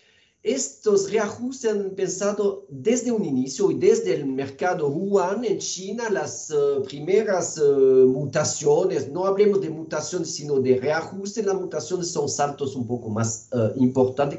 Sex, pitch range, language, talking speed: male, 135-205 Hz, Spanish, 145 wpm